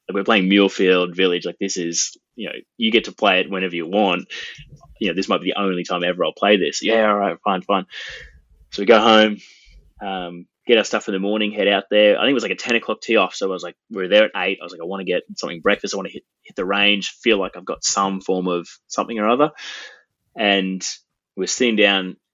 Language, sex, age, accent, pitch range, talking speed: English, male, 20-39, Australian, 90-105 Hz, 260 wpm